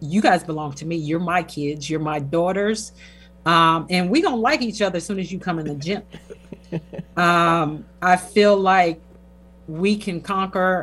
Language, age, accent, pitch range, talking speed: English, 40-59, American, 150-185 Hz, 185 wpm